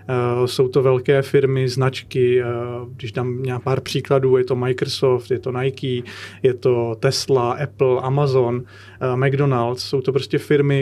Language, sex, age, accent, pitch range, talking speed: Czech, male, 30-49, native, 125-140 Hz, 145 wpm